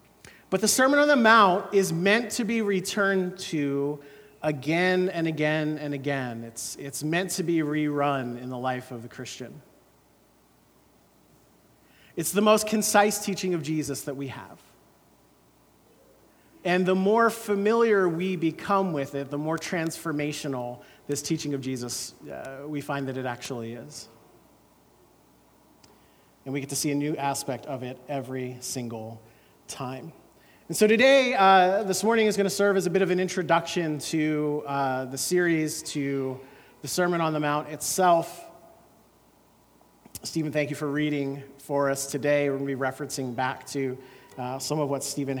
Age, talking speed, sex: 40-59, 160 wpm, male